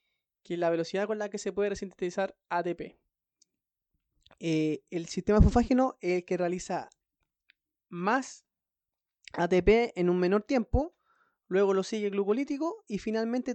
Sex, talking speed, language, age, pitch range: male, 135 wpm, Spanish, 20-39, 175-230 Hz